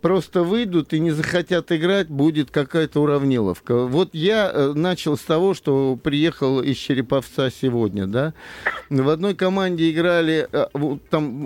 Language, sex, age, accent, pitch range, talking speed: Russian, male, 50-69, native, 145-215 Hz, 130 wpm